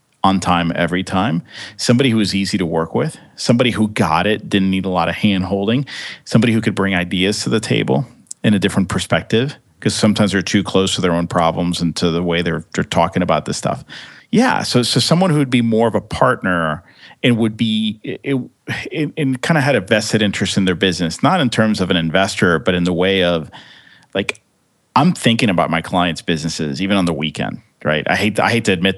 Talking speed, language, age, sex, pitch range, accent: 225 wpm, English, 40-59, male, 85-110 Hz, American